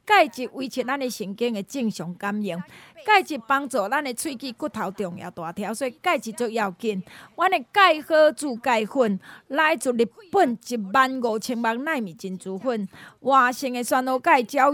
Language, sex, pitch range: Chinese, female, 225-310 Hz